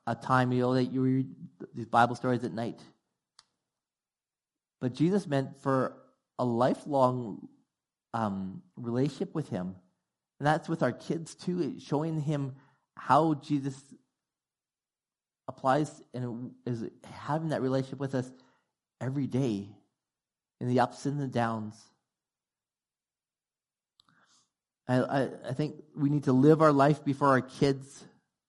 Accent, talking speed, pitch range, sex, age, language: American, 130 wpm, 125-150 Hz, male, 30-49, English